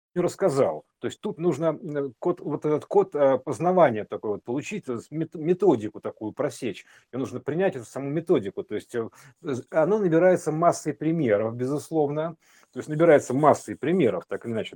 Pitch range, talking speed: 125-170 Hz, 150 wpm